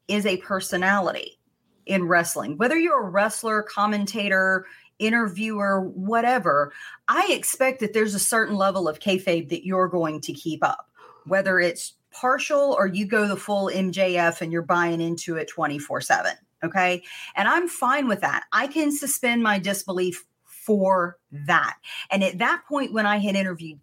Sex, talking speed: female, 160 wpm